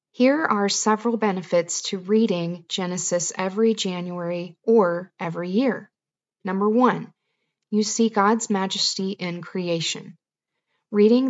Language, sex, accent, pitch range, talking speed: English, female, American, 180-215 Hz, 110 wpm